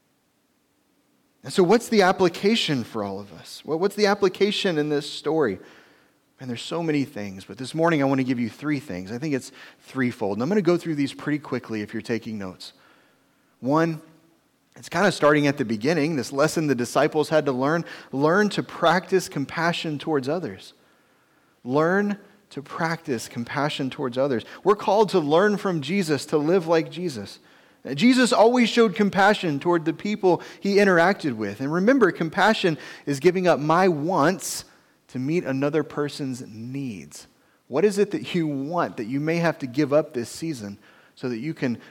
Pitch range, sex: 130-175 Hz, male